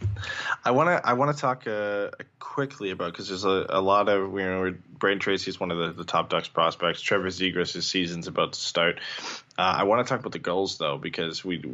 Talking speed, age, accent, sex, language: 235 wpm, 20-39, American, male, English